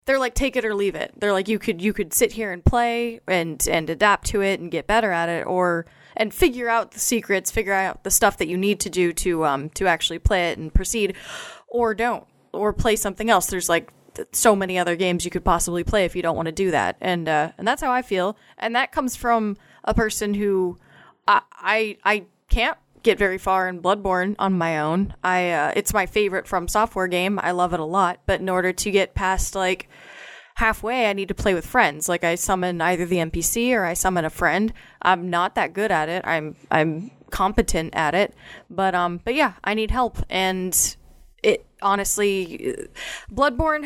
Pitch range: 180-230 Hz